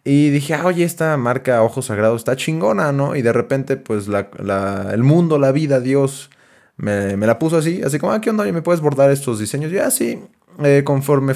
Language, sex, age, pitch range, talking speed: Spanish, male, 20-39, 105-140 Hz, 225 wpm